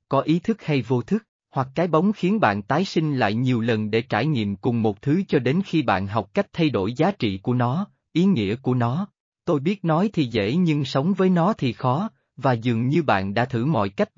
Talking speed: 240 wpm